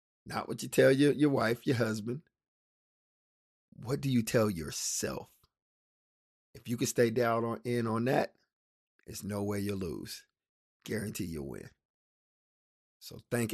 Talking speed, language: 145 wpm, English